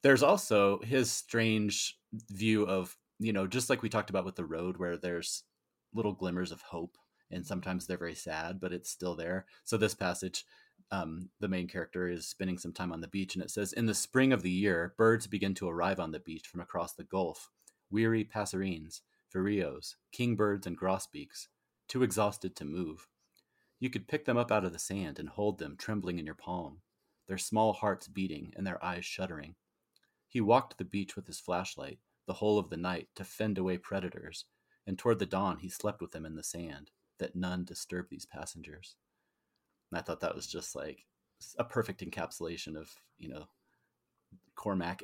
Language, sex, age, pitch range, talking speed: English, male, 30-49, 90-105 Hz, 195 wpm